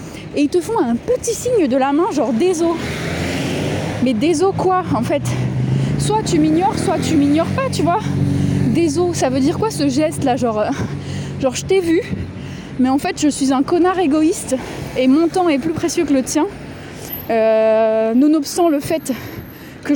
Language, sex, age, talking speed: French, female, 20-39, 185 wpm